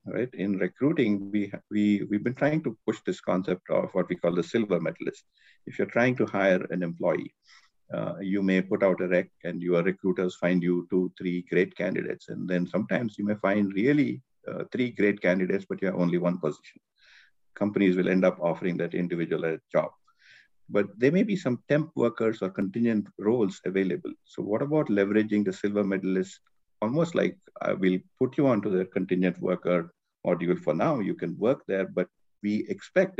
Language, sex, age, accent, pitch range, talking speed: English, male, 50-69, Indian, 90-110 Hz, 195 wpm